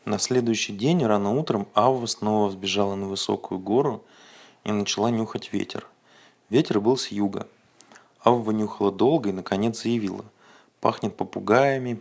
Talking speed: 135 wpm